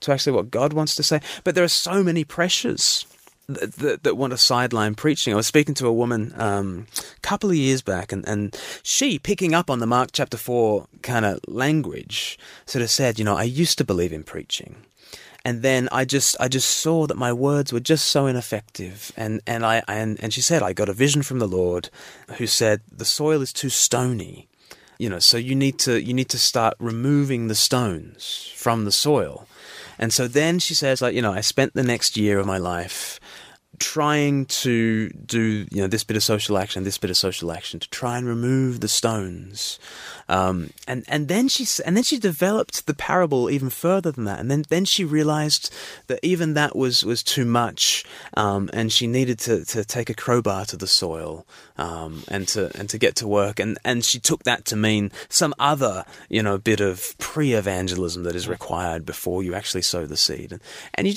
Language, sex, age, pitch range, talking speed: English, male, 20-39, 105-145 Hz, 215 wpm